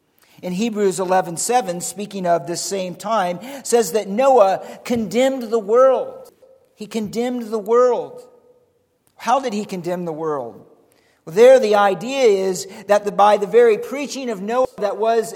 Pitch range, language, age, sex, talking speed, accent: 170-230 Hz, English, 50-69, male, 155 wpm, American